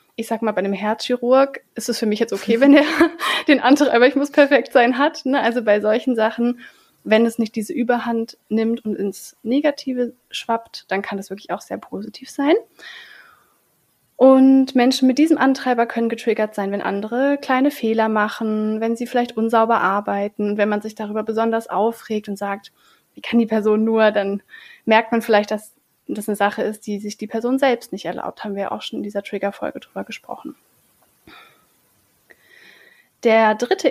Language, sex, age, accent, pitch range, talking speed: German, female, 30-49, German, 210-250 Hz, 180 wpm